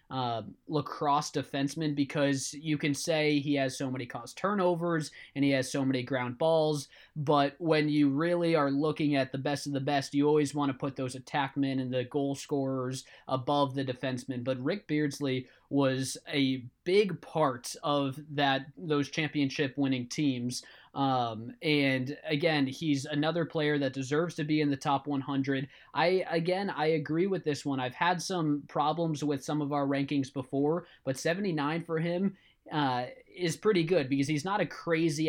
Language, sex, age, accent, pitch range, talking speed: English, male, 20-39, American, 135-155 Hz, 175 wpm